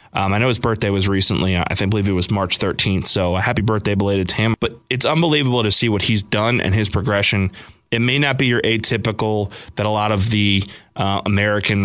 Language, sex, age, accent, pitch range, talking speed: English, male, 20-39, American, 95-115 Hz, 235 wpm